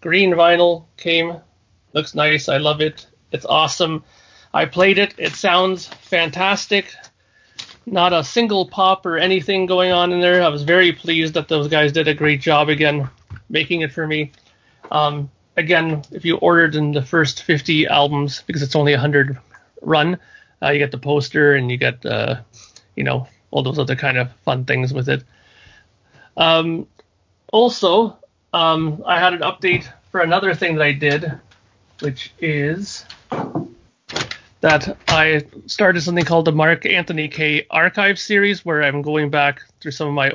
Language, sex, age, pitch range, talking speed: English, male, 30-49, 140-170 Hz, 165 wpm